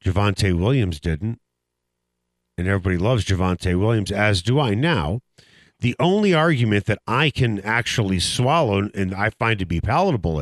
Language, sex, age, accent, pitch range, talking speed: English, male, 50-69, American, 95-140 Hz, 150 wpm